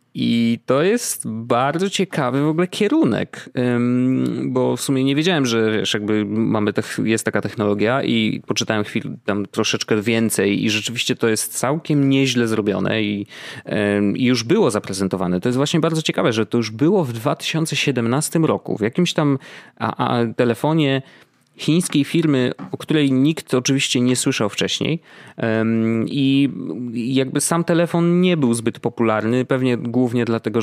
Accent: native